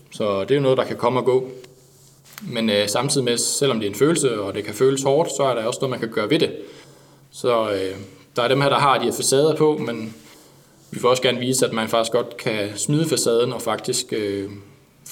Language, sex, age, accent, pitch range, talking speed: Danish, male, 20-39, native, 115-140 Hz, 245 wpm